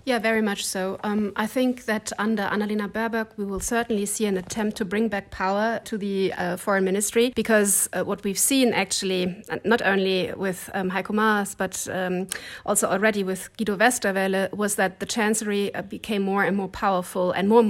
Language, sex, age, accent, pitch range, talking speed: English, female, 30-49, German, 190-220 Hz, 195 wpm